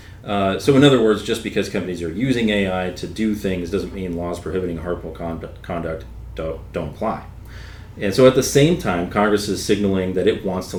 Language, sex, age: English, male, 30-49